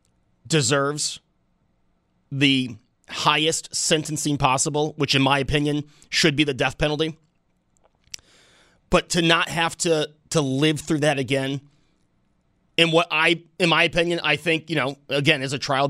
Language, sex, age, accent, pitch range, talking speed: English, male, 30-49, American, 125-160 Hz, 145 wpm